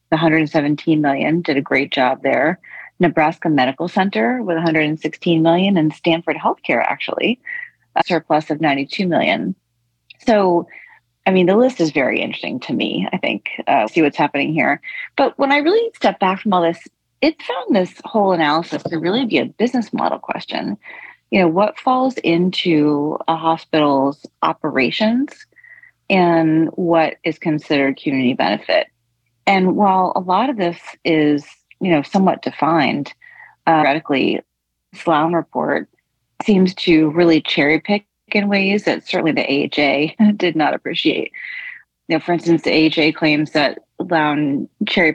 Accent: American